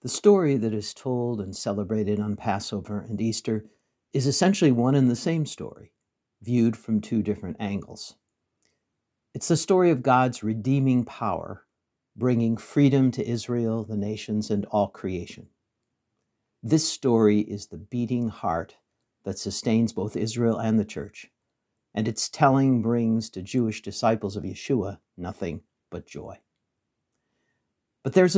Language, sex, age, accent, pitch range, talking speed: English, male, 60-79, American, 105-135 Hz, 140 wpm